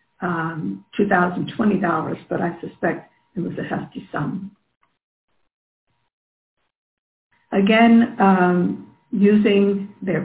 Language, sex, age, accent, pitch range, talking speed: English, female, 60-79, American, 170-210 Hz, 80 wpm